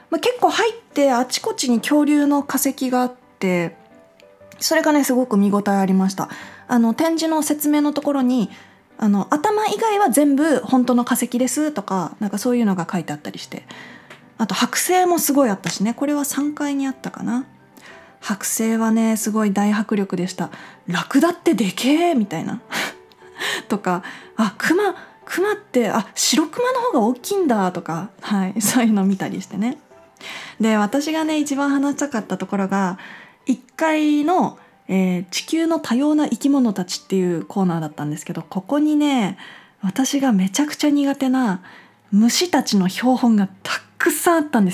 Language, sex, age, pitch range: Japanese, female, 20-39, 195-285 Hz